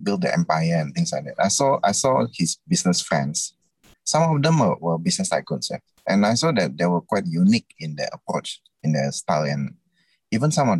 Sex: male